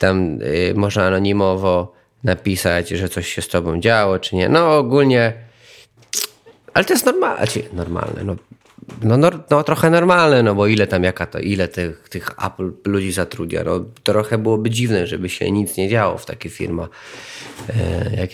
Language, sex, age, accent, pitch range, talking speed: Polish, male, 30-49, native, 90-110 Hz, 165 wpm